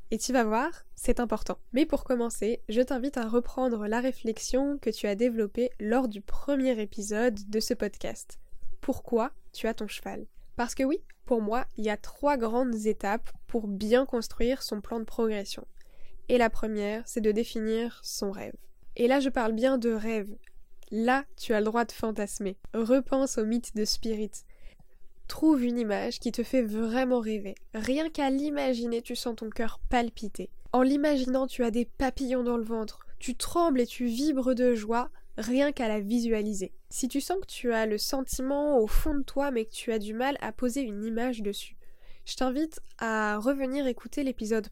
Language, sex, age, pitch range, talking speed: French, female, 10-29, 220-260 Hz, 190 wpm